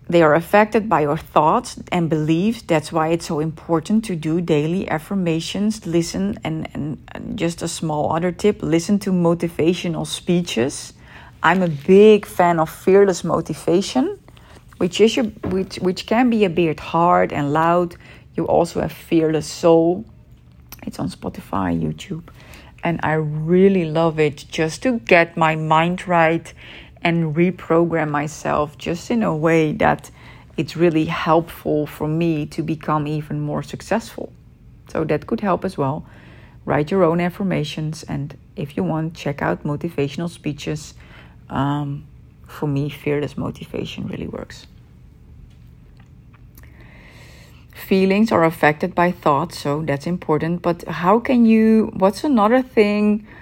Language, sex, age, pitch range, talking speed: Dutch, female, 40-59, 155-185 Hz, 140 wpm